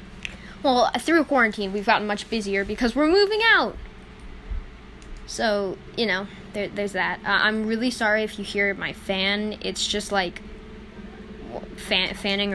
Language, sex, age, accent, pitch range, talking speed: English, female, 10-29, American, 200-230 Hz, 140 wpm